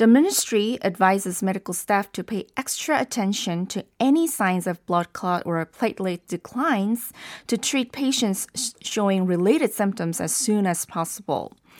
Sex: female